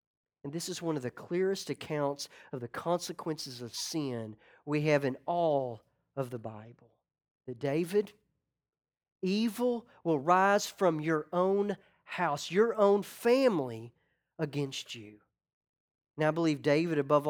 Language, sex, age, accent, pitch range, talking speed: English, male, 40-59, American, 135-195 Hz, 135 wpm